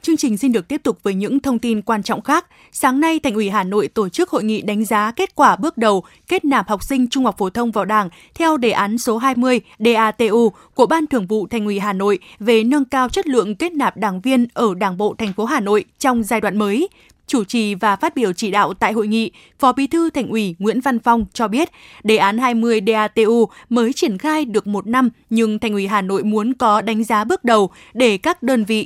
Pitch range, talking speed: 215-265 Hz, 245 wpm